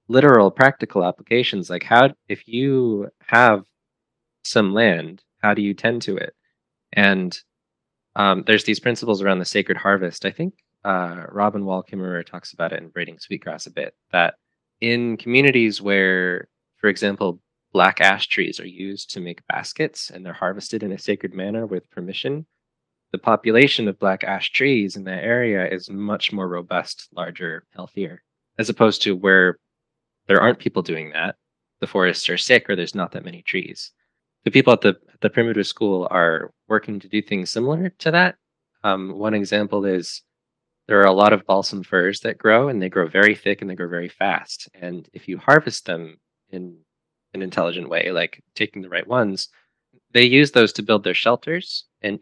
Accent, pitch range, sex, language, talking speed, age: American, 95-115 Hz, male, English, 180 wpm, 20-39